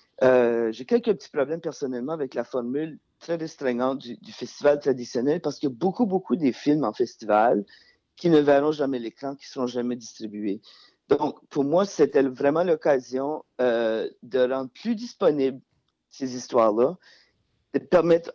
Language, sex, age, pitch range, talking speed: French, male, 50-69, 130-165 Hz, 165 wpm